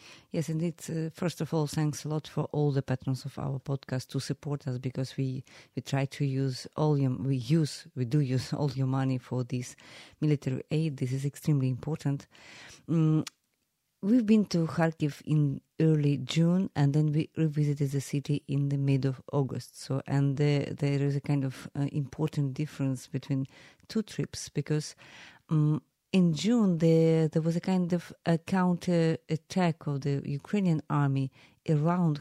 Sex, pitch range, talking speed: female, 140-165 Hz, 170 wpm